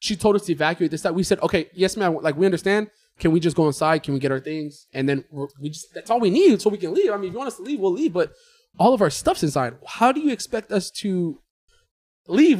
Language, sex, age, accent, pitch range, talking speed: English, male, 20-39, American, 155-220 Hz, 285 wpm